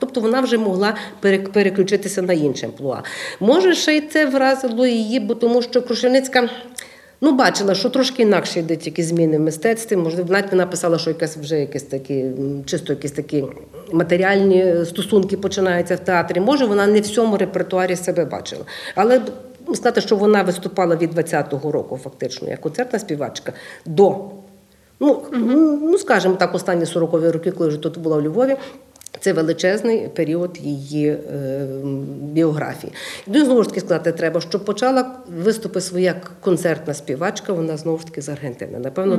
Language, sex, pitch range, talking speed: Ukrainian, female, 165-215 Hz, 160 wpm